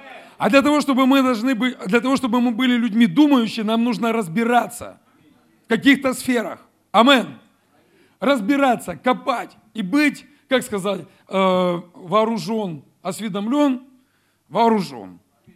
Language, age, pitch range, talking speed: Russian, 40-59, 200-250 Hz, 115 wpm